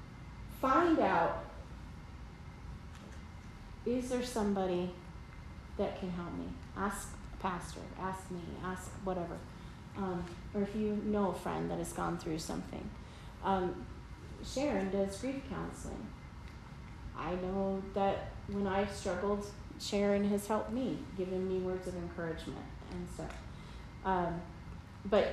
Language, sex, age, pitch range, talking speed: English, female, 30-49, 180-235 Hz, 125 wpm